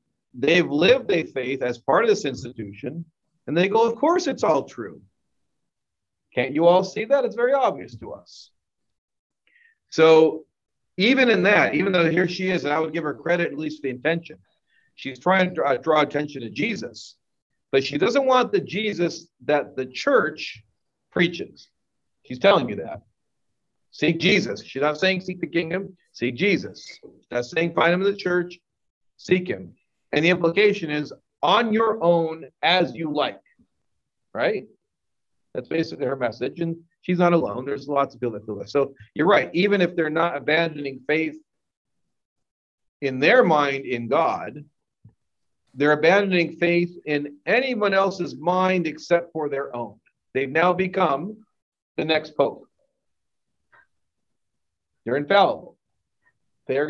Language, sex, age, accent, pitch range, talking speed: English, male, 50-69, American, 140-185 Hz, 155 wpm